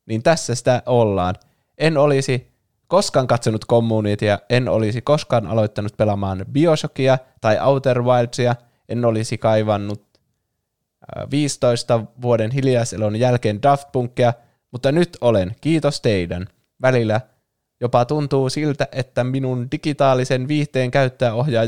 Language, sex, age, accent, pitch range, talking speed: Finnish, male, 20-39, native, 110-130 Hz, 115 wpm